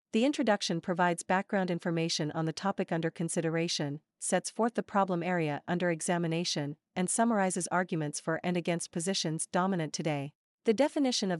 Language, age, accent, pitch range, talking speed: English, 40-59, American, 165-200 Hz, 155 wpm